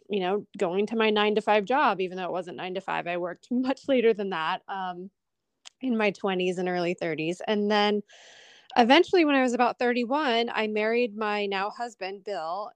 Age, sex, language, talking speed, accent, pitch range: 20-39, female, English, 200 wpm, American, 185-220 Hz